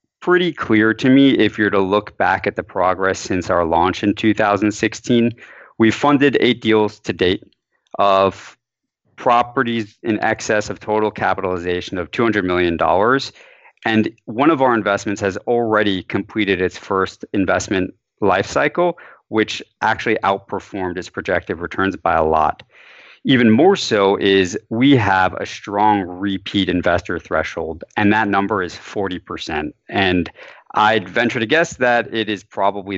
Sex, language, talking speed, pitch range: male, English, 145 wpm, 100-120 Hz